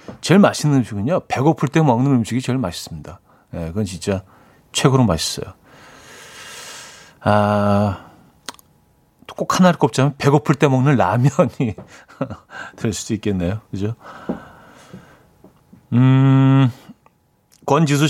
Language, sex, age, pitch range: Korean, male, 40-59, 110-145 Hz